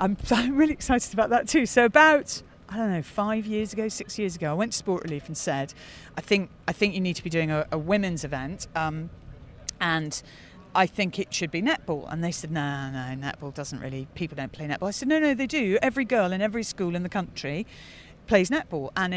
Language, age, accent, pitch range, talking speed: English, 40-59, British, 160-210 Hz, 235 wpm